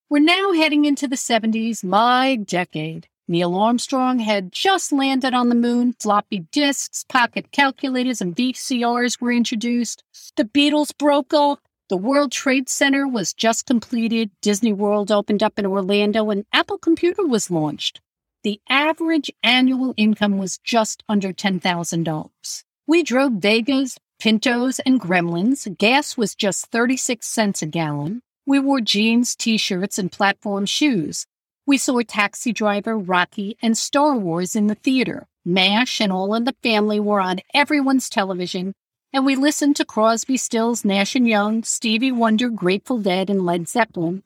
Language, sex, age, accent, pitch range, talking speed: English, female, 50-69, American, 200-265 Hz, 150 wpm